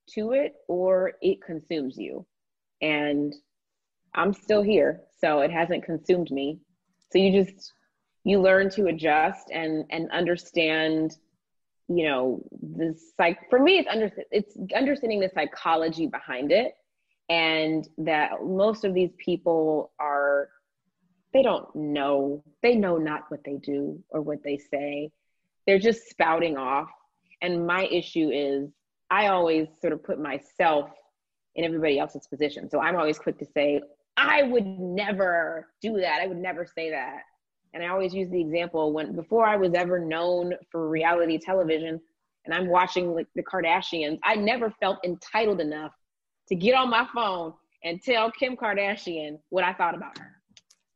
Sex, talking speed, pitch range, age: female, 155 wpm, 155-205 Hz, 30-49